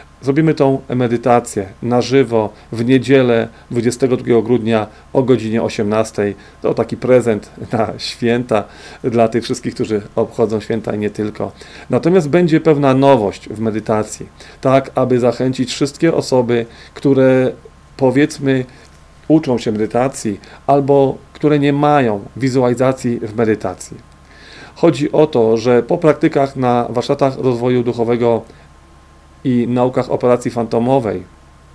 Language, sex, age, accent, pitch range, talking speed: Polish, male, 40-59, native, 115-135 Hz, 120 wpm